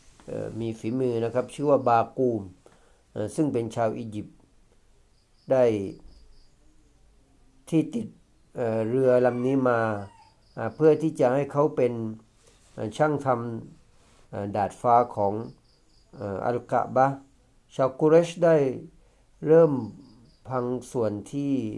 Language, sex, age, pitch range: Thai, male, 60-79, 110-140 Hz